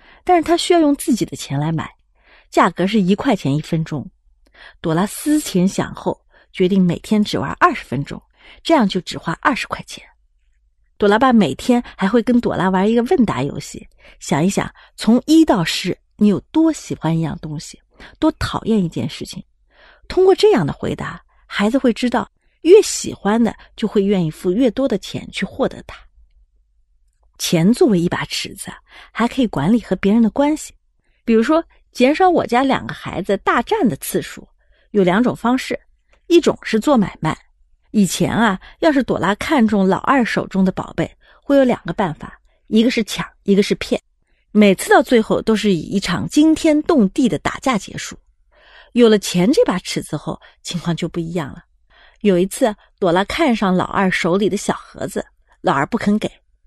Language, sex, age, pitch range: Chinese, female, 30-49, 180-255 Hz